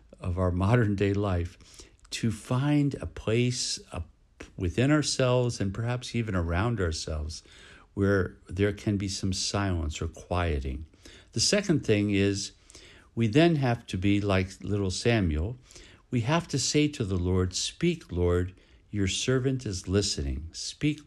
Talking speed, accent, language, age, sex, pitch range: 140 wpm, American, English, 60-79, male, 90-110 Hz